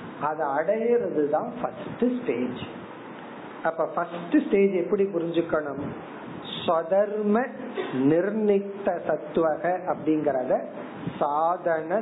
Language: Tamil